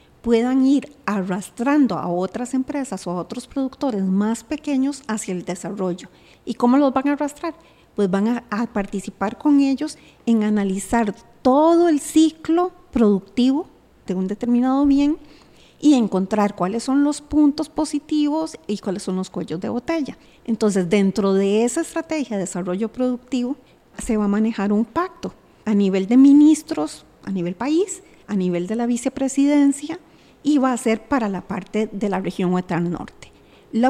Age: 40-59